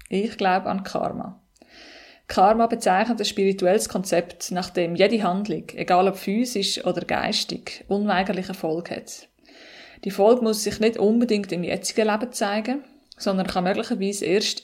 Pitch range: 190-235 Hz